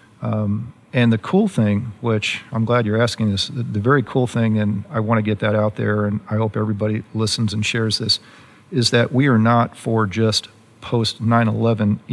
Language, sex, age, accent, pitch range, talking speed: English, male, 50-69, American, 105-120 Hz, 200 wpm